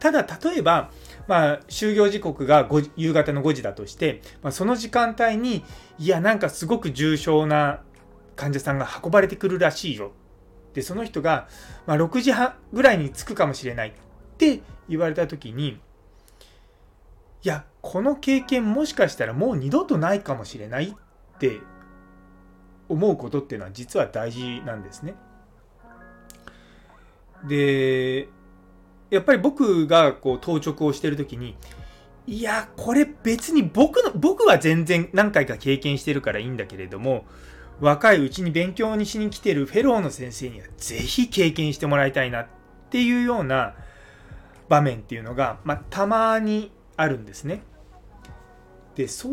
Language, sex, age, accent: Japanese, male, 30-49, native